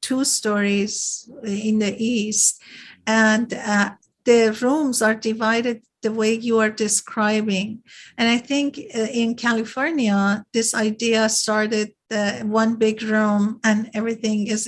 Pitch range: 220-270 Hz